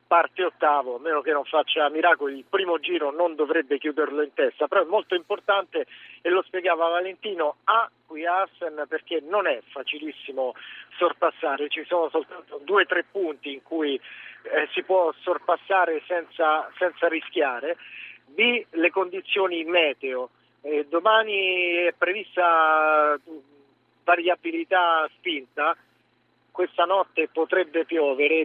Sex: male